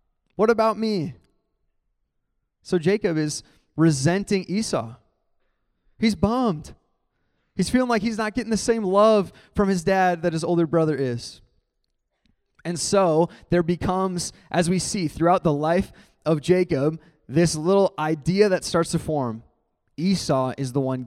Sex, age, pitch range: male, 20-39, 135-200 Hz